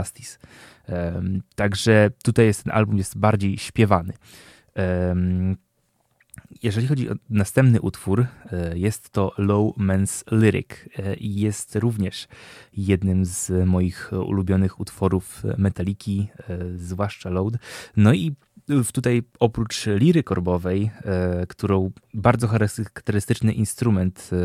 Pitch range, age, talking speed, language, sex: 95-115 Hz, 20-39, 100 wpm, Polish, male